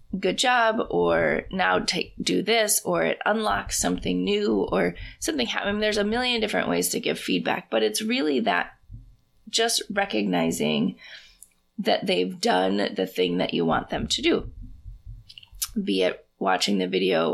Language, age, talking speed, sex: English, 20-39, 165 wpm, female